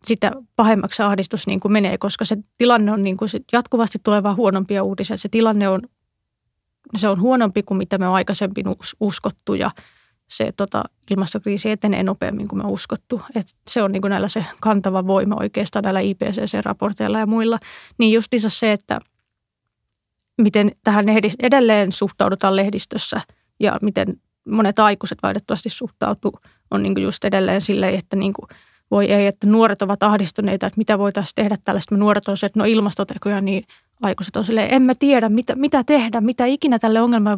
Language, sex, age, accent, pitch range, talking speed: Finnish, female, 20-39, native, 200-225 Hz, 170 wpm